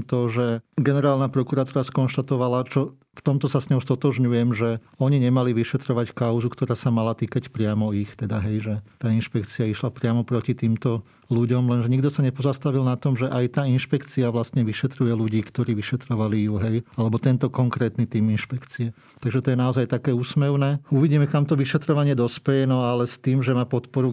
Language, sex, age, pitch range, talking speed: Slovak, male, 40-59, 115-135 Hz, 180 wpm